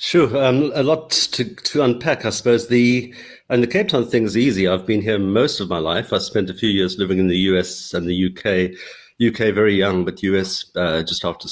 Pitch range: 100-120 Hz